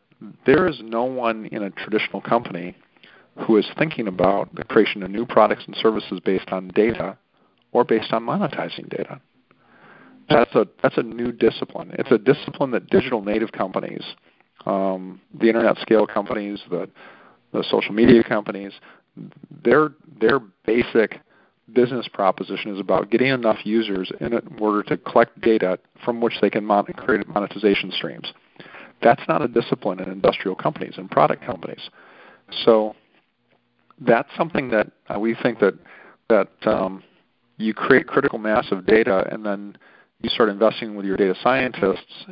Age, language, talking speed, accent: 40-59, English, 150 wpm, American